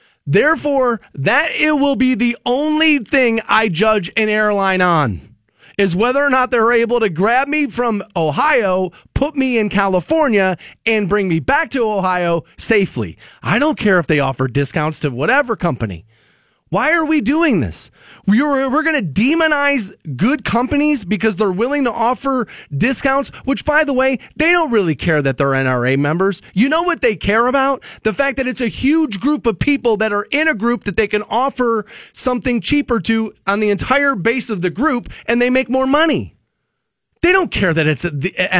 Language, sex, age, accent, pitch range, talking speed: English, male, 30-49, American, 175-265 Hz, 185 wpm